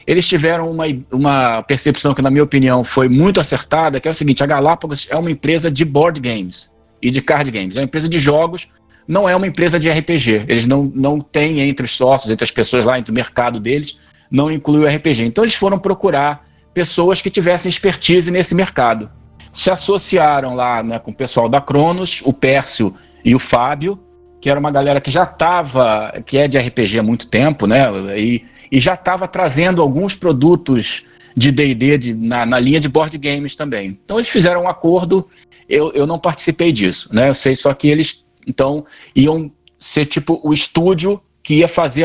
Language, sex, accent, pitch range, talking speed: Portuguese, male, Brazilian, 130-165 Hz, 200 wpm